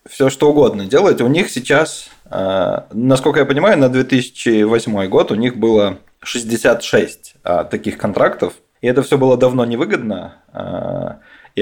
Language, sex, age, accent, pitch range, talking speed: Russian, male, 20-39, native, 100-125 Hz, 135 wpm